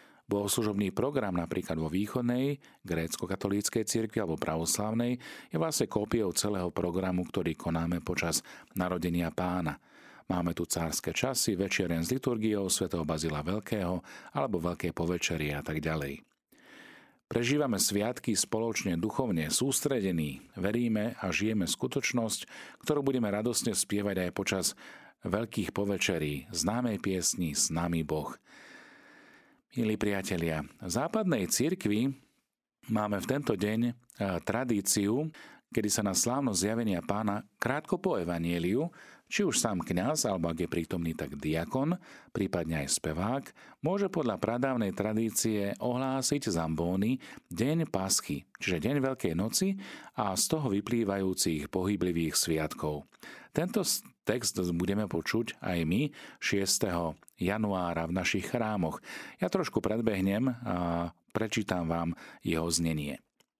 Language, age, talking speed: Slovak, 40-59, 120 wpm